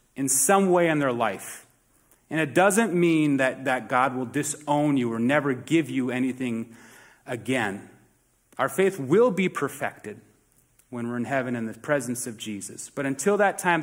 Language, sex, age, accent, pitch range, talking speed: English, male, 30-49, American, 130-180 Hz, 175 wpm